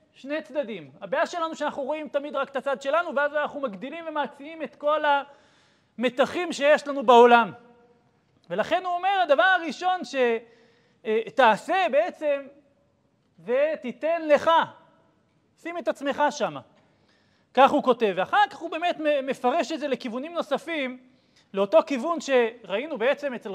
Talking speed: 135 wpm